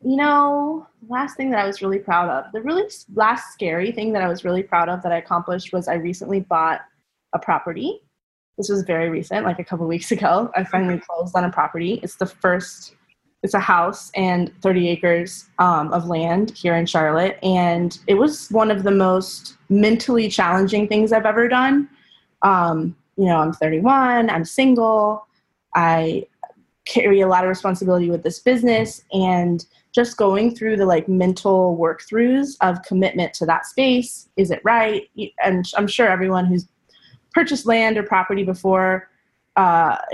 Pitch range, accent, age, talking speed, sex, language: 175-215 Hz, American, 20-39, 175 wpm, female, English